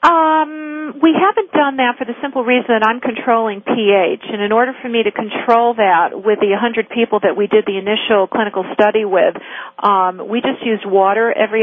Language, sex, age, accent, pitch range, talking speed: English, female, 50-69, American, 200-245 Hz, 200 wpm